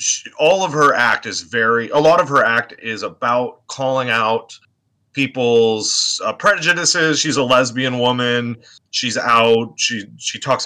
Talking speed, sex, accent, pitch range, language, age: 160 wpm, male, American, 120-155 Hz, English, 30-49